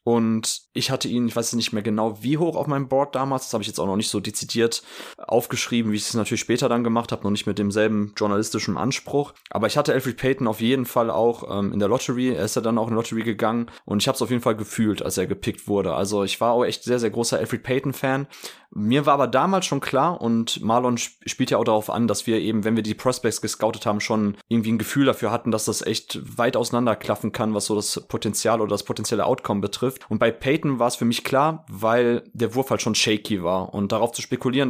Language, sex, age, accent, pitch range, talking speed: German, male, 20-39, German, 110-130 Hz, 250 wpm